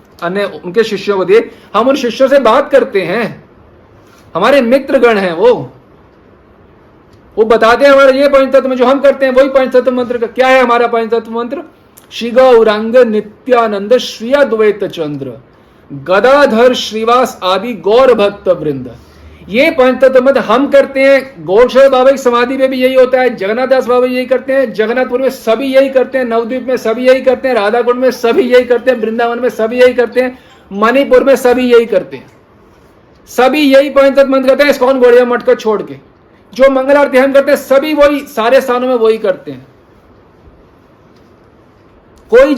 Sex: male